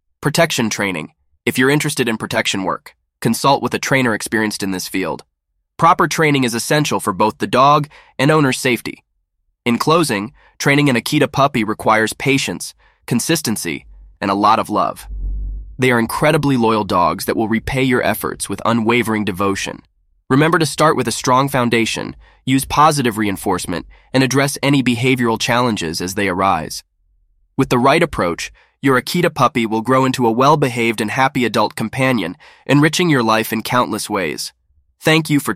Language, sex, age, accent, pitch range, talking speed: English, male, 20-39, American, 100-135 Hz, 165 wpm